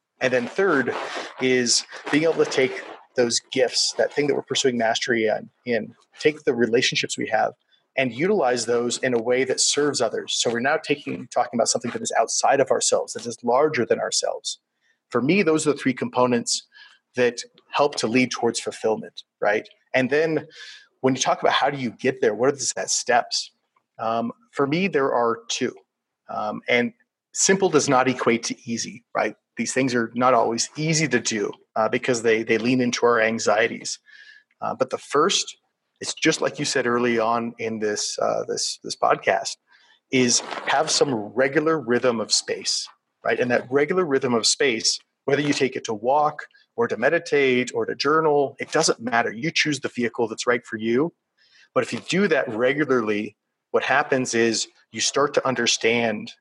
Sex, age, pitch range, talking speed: male, 30-49, 115-150 Hz, 185 wpm